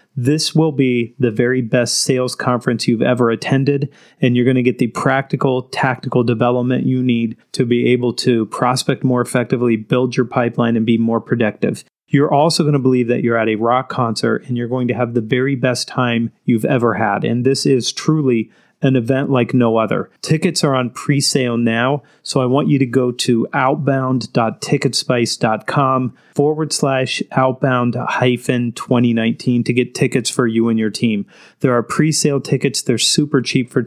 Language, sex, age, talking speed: English, male, 30-49, 180 wpm